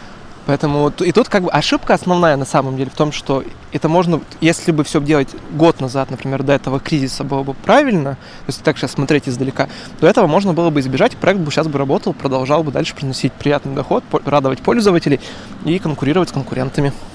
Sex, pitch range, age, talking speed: male, 140-170 Hz, 20-39, 195 wpm